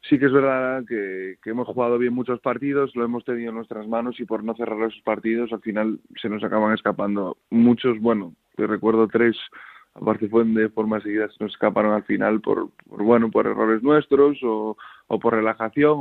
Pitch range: 110-125 Hz